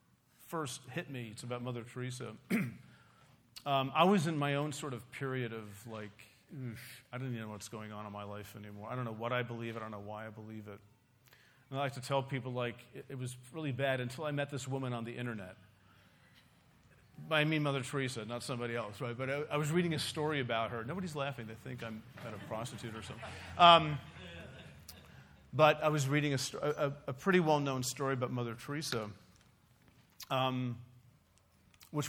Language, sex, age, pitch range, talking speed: English, male, 40-59, 115-140 Hz, 200 wpm